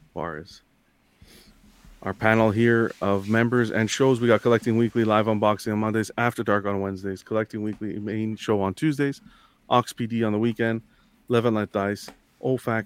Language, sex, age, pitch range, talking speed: English, male, 30-49, 100-115 Hz, 165 wpm